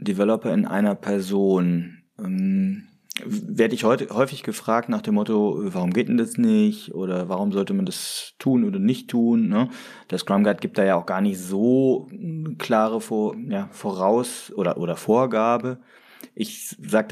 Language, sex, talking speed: German, male, 160 wpm